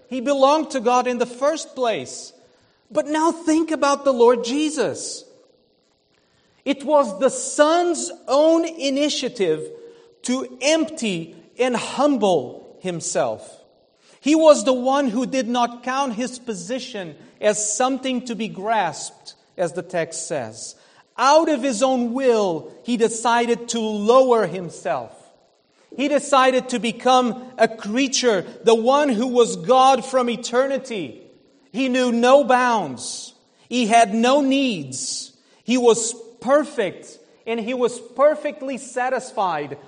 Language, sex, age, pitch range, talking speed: English, male, 40-59, 230-285 Hz, 125 wpm